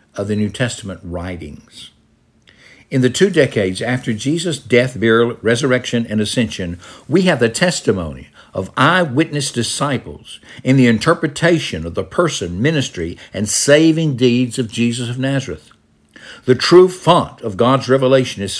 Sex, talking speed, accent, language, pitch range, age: male, 140 wpm, American, English, 105-140 Hz, 60-79